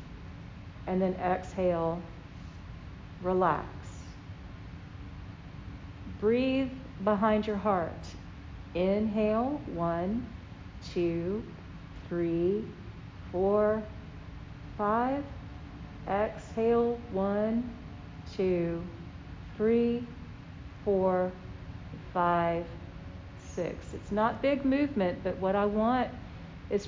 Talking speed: 65 wpm